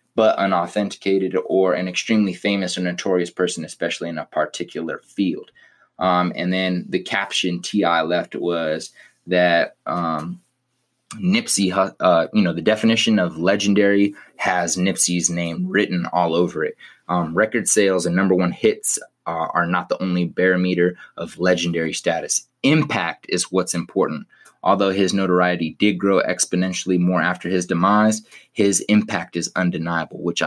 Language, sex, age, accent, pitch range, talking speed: English, male, 20-39, American, 85-100 Hz, 145 wpm